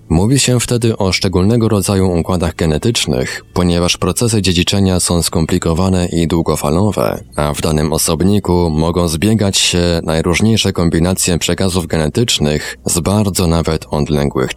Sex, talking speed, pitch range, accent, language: male, 125 wpm, 80-100 Hz, native, Polish